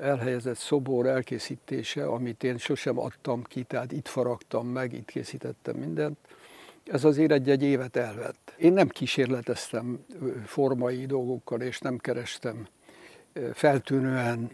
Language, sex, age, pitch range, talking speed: Hungarian, male, 60-79, 125-140 Hz, 120 wpm